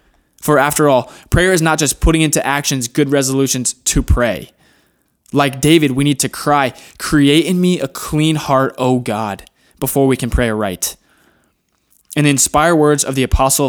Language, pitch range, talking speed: English, 120-150 Hz, 170 wpm